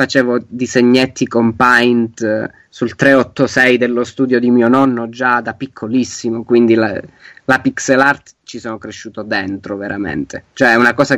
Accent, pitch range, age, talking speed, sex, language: native, 115-130 Hz, 20-39, 150 wpm, male, Italian